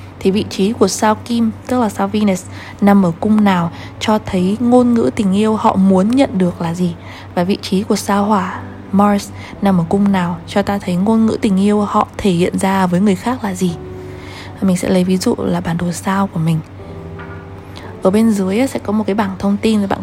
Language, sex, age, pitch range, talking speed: Vietnamese, female, 20-39, 175-210 Hz, 225 wpm